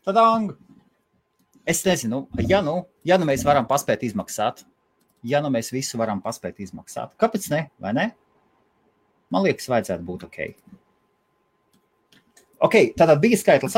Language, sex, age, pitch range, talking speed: English, male, 30-49, 115-190 Hz, 145 wpm